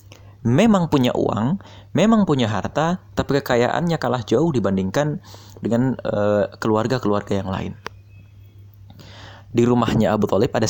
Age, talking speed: 20-39, 120 wpm